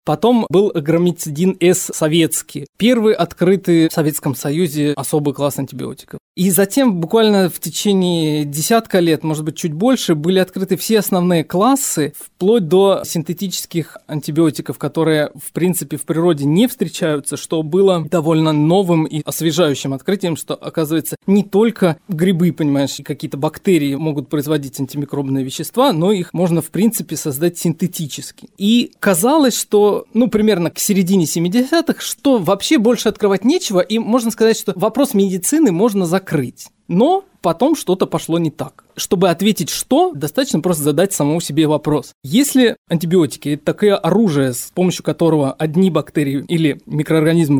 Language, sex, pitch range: Russian, male, 155-205 Hz